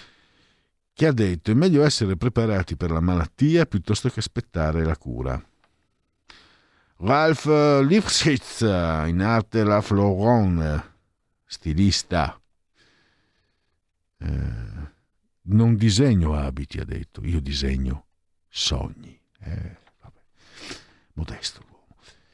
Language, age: Italian, 50-69